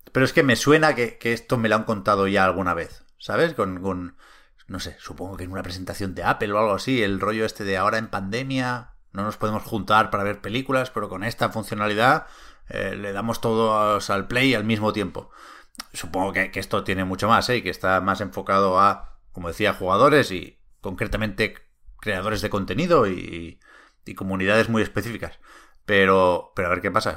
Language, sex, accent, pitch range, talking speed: Spanish, male, Spanish, 95-115 Hz, 200 wpm